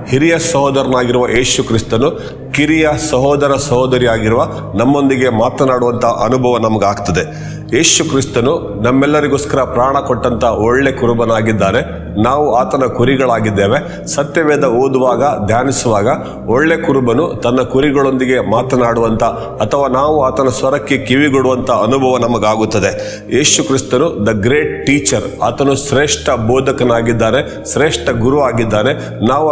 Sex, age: male, 40-59